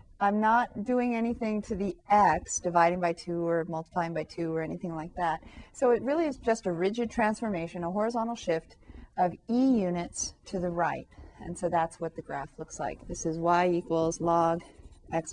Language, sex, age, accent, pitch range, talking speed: English, female, 40-59, American, 170-225 Hz, 190 wpm